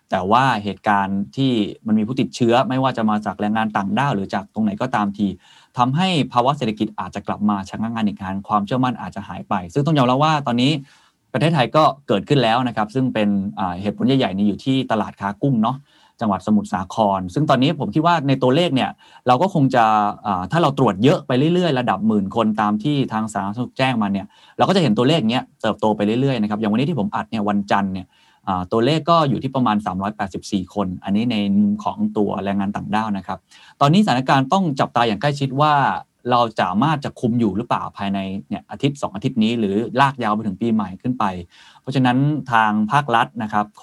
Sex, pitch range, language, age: male, 105-135 Hz, Thai, 20-39